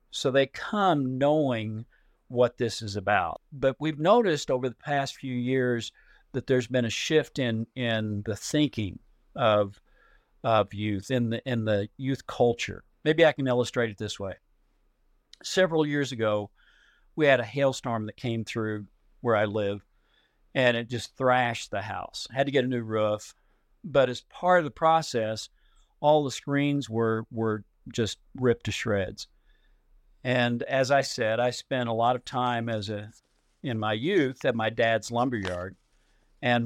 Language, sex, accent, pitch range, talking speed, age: English, male, American, 110-130 Hz, 170 wpm, 50-69